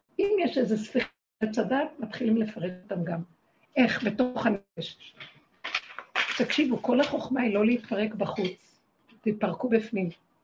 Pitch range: 200-255 Hz